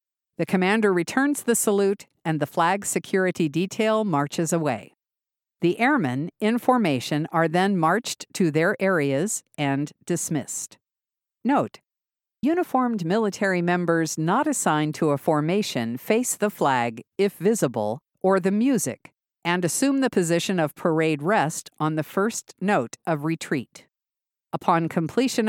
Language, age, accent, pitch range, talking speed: English, 50-69, American, 150-205 Hz, 130 wpm